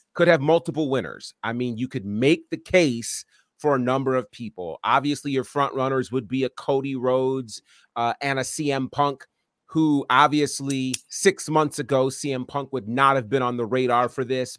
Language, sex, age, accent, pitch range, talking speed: English, male, 30-49, American, 125-150 Hz, 190 wpm